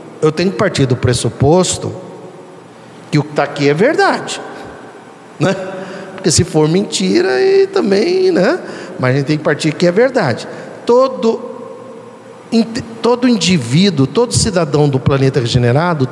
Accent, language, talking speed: Brazilian, Portuguese, 140 wpm